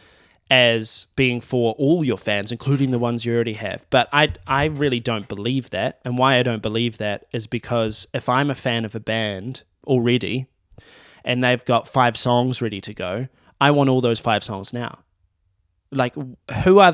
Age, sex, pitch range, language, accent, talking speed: 20-39, male, 110-135 Hz, English, Australian, 190 wpm